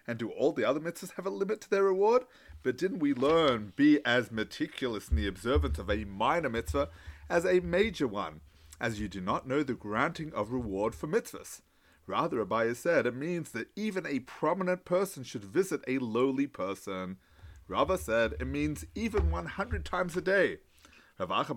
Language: English